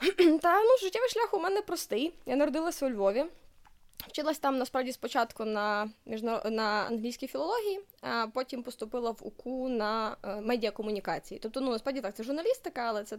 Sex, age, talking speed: female, 20-39, 165 wpm